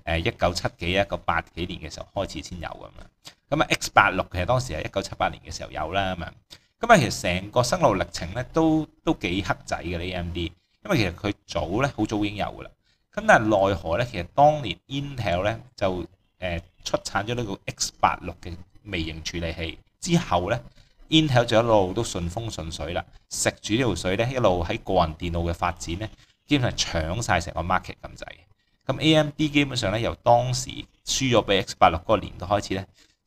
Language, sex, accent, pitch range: Chinese, male, native, 85-115 Hz